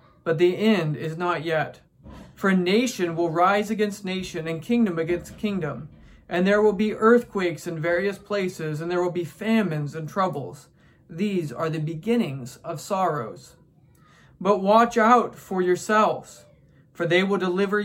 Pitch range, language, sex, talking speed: 165-210 Hz, English, male, 160 wpm